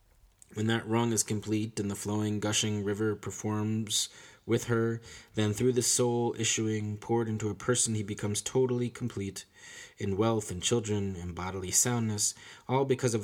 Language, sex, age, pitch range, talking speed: English, male, 20-39, 100-120 Hz, 165 wpm